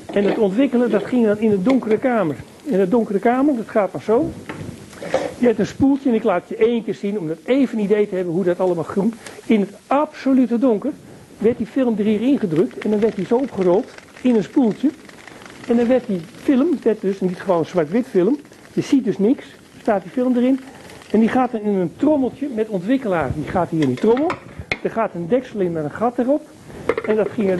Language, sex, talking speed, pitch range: Dutch, male, 235 wpm, 195-260 Hz